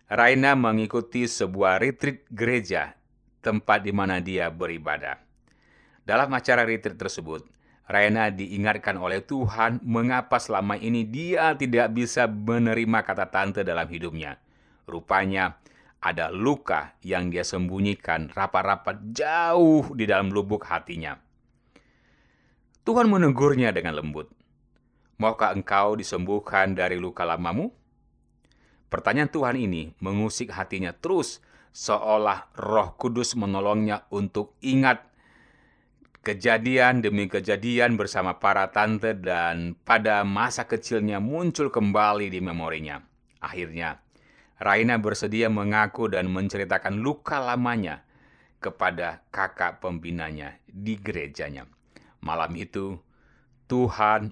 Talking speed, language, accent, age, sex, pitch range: 105 wpm, Indonesian, native, 30-49, male, 95-120 Hz